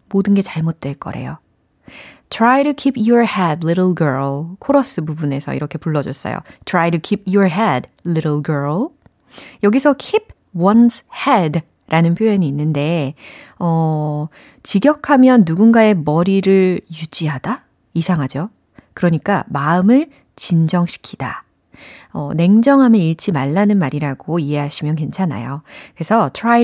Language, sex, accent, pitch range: Korean, female, native, 155-225 Hz